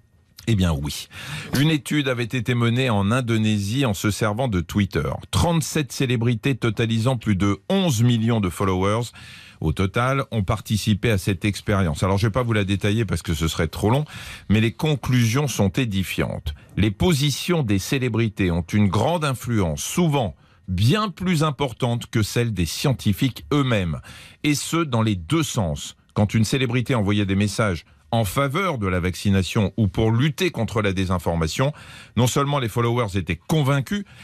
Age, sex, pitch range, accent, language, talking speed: 40-59, male, 100-135 Hz, French, French, 170 wpm